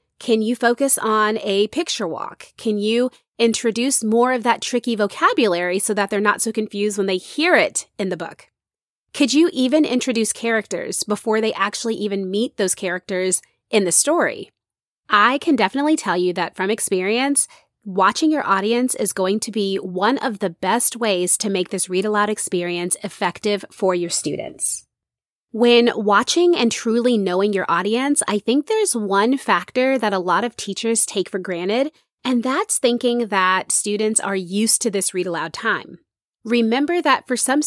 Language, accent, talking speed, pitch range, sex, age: English, American, 170 wpm, 195-255 Hz, female, 30-49